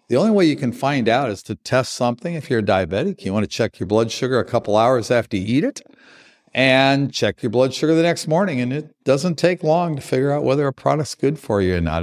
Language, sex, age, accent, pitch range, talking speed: English, male, 50-69, American, 115-150 Hz, 265 wpm